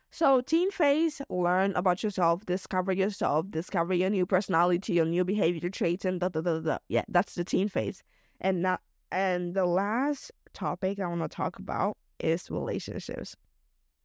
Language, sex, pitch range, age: English, female, 170-230 Hz, 20-39